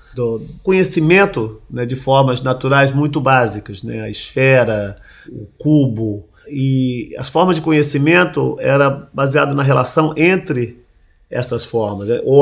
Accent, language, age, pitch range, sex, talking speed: Brazilian, Portuguese, 40-59, 125-150 Hz, male, 130 wpm